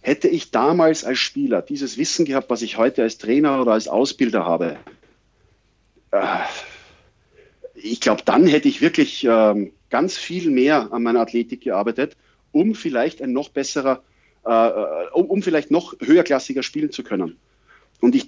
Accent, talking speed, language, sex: German, 160 wpm, German, male